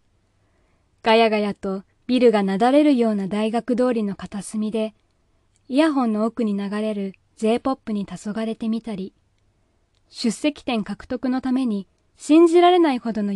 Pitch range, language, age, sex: 180-255 Hz, Japanese, 20-39, female